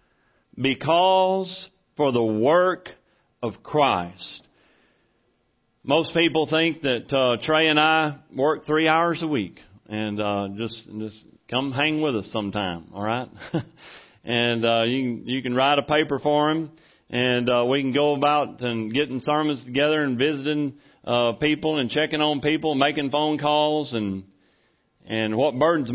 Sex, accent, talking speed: male, American, 155 wpm